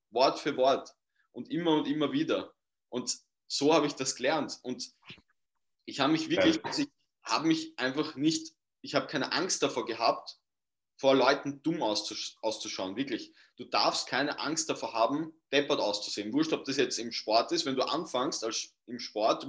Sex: male